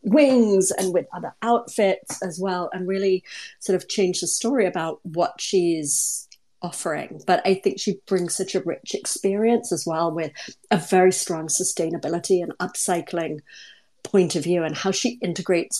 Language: English